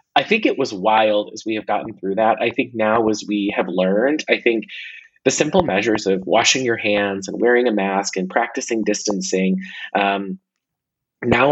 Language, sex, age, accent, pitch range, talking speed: English, male, 30-49, American, 105-140 Hz, 190 wpm